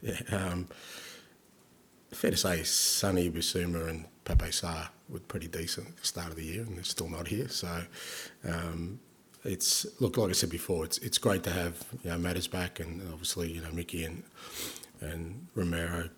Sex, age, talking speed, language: male, 30-49, 180 wpm, English